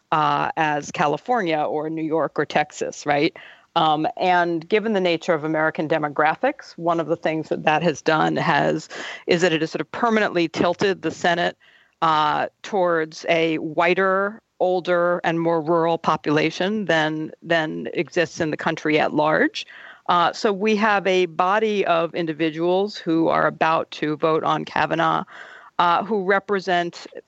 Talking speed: 155 wpm